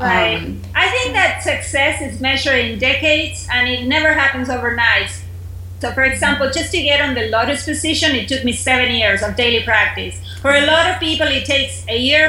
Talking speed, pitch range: 200 wpm, 235-290 Hz